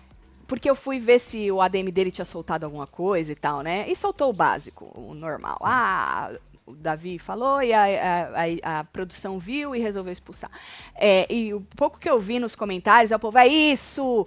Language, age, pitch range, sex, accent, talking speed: Portuguese, 20-39, 185-265 Hz, female, Brazilian, 205 wpm